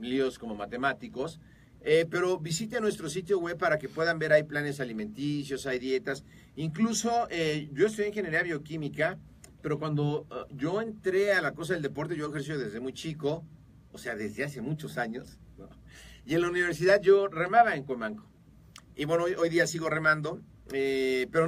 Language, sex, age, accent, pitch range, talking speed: Spanish, male, 40-59, Mexican, 140-180 Hz, 175 wpm